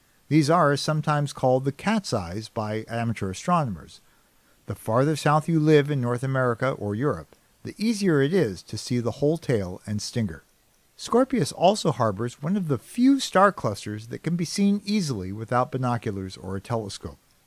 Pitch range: 110-160 Hz